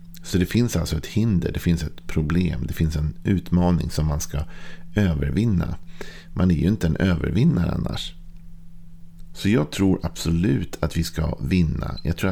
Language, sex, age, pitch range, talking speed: Swedish, male, 50-69, 80-90 Hz, 170 wpm